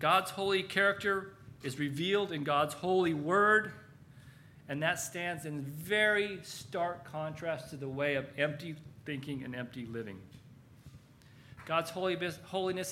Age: 40-59